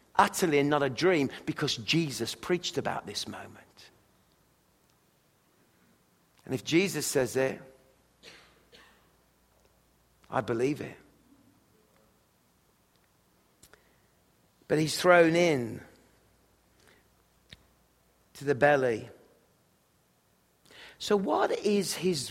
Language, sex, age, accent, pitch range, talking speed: English, male, 50-69, British, 135-190 Hz, 80 wpm